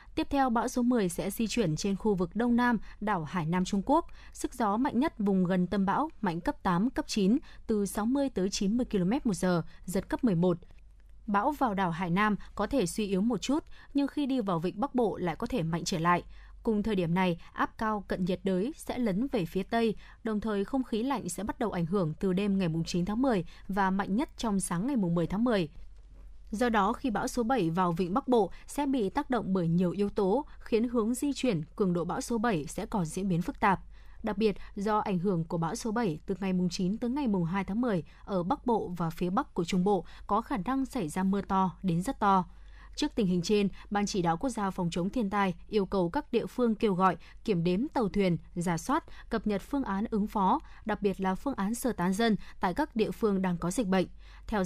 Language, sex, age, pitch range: Vietnamese, female, 20-39, 185-235 Hz